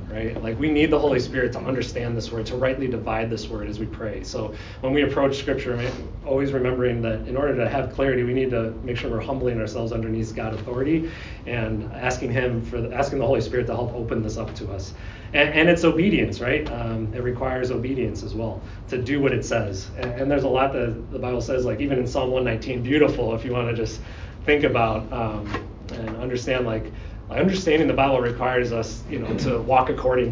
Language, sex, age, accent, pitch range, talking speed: English, male, 30-49, American, 110-135 Hz, 220 wpm